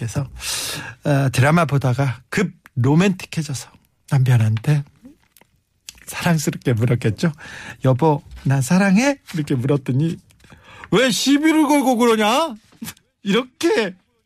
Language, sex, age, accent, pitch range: Korean, male, 50-69, native, 145-225 Hz